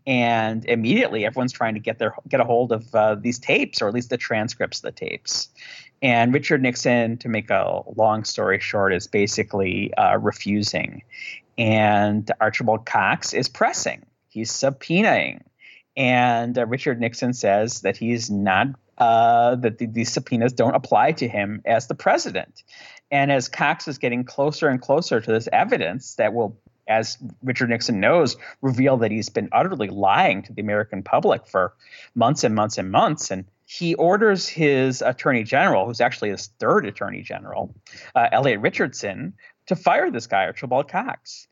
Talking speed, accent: 170 wpm, American